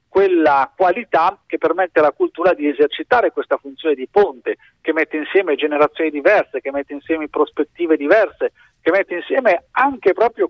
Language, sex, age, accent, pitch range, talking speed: Italian, male, 50-69, native, 150-225 Hz, 155 wpm